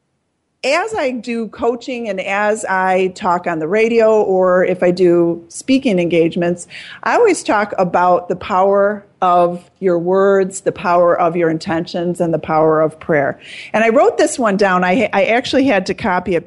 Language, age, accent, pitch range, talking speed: English, 40-59, American, 175-205 Hz, 180 wpm